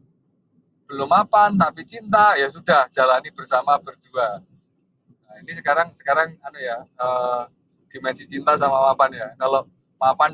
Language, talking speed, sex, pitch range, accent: Indonesian, 130 wpm, male, 130-175 Hz, native